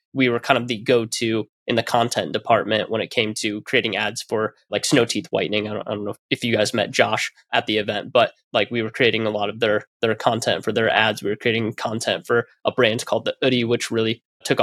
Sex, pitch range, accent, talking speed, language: male, 115-135 Hz, American, 250 wpm, English